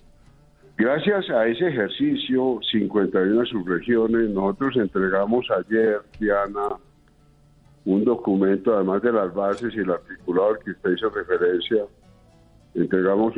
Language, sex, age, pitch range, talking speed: Spanish, male, 60-79, 100-125 Hz, 110 wpm